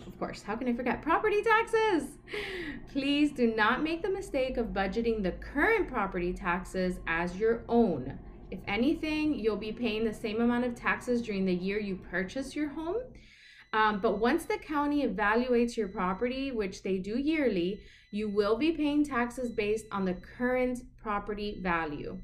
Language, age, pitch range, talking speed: English, 30-49, 190-250 Hz, 170 wpm